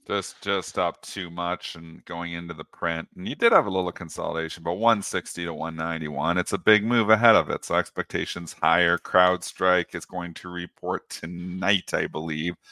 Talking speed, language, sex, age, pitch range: 185 wpm, English, male, 40-59, 90-120 Hz